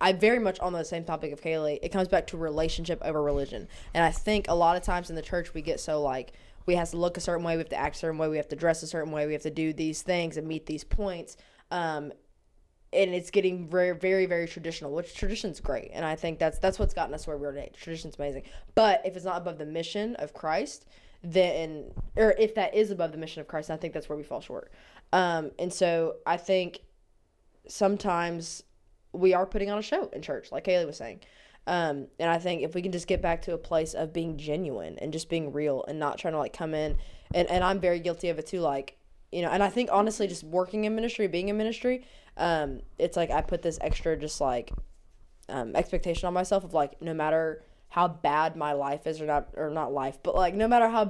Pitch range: 155-185 Hz